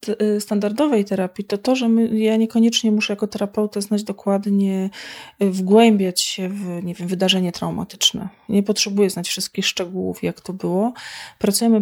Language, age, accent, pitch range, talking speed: Polish, 30-49, native, 185-210 Hz, 145 wpm